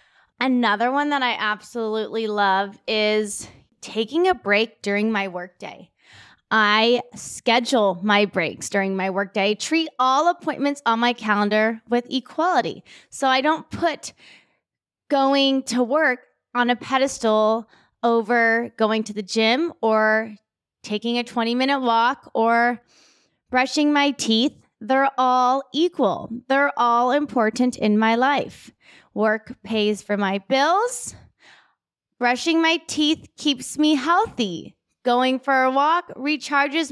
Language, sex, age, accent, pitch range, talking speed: English, female, 20-39, American, 220-285 Hz, 125 wpm